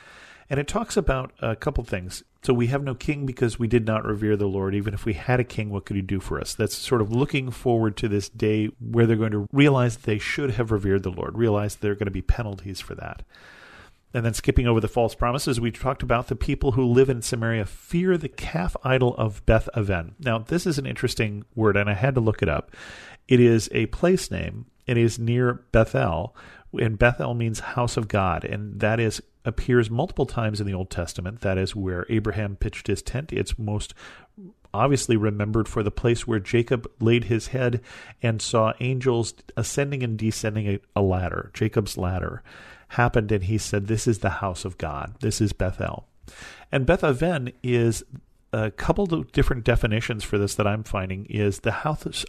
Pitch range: 100-125 Hz